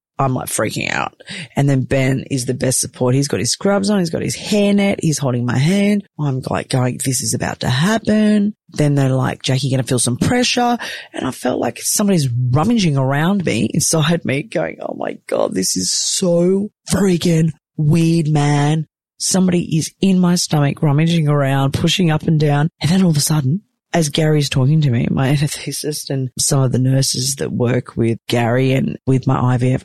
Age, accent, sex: 30-49, Australian, female